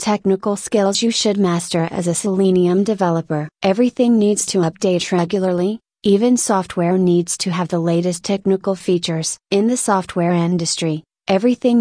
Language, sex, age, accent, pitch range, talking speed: English, female, 30-49, American, 175-200 Hz, 140 wpm